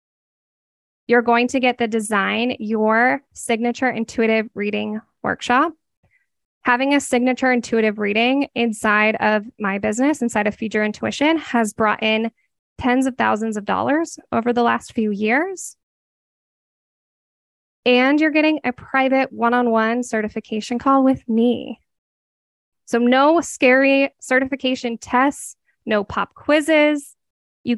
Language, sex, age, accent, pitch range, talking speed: English, female, 10-29, American, 220-265 Hz, 125 wpm